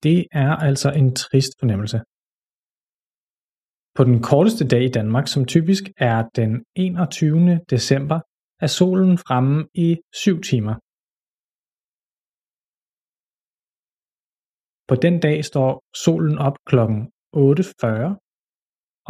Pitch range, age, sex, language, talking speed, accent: 125-170 Hz, 20-39, male, Danish, 100 wpm, native